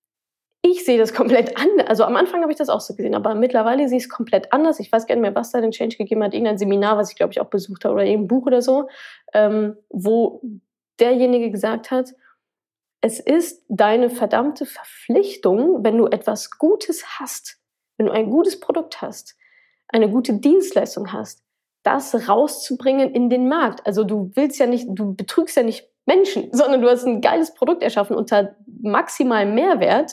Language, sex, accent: German, female, German